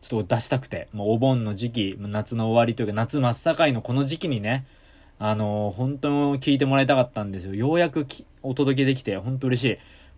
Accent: native